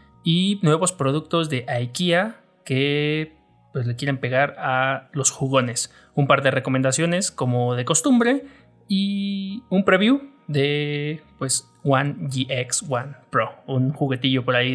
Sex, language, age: male, Spanish, 30-49